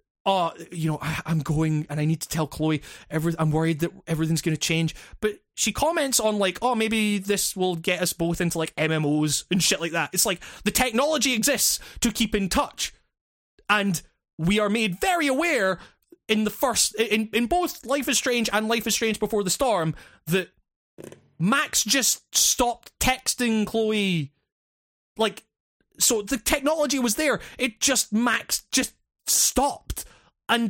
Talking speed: 170 wpm